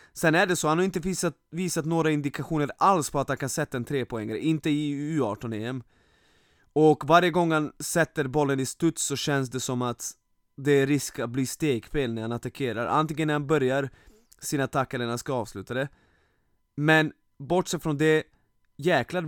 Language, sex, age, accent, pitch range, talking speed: Swedish, male, 20-39, native, 125-155 Hz, 190 wpm